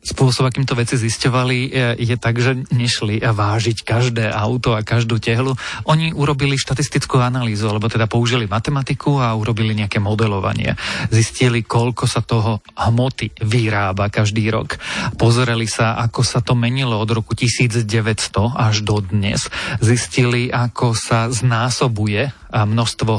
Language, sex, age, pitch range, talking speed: Slovak, male, 40-59, 110-125 Hz, 130 wpm